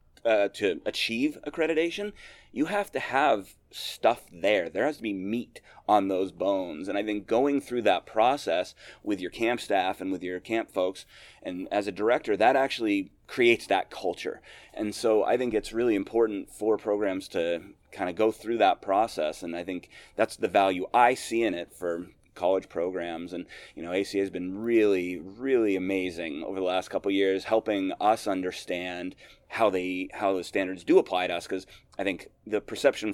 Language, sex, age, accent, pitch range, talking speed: English, male, 30-49, American, 90-115 Hz, 190 wpm